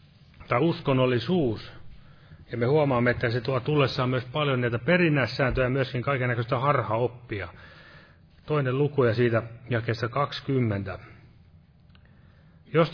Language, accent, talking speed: Finnish, native, 105 wpm